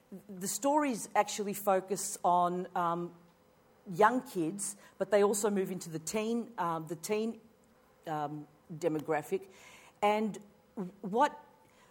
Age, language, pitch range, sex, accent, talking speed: 50-69, English, 170-205 Hz, female, Australian, 110 wpm